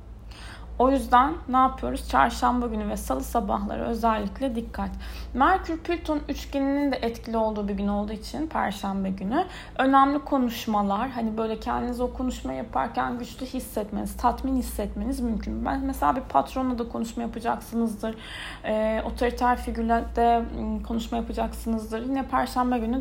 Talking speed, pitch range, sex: 130 wpm, 215-255 Hz, female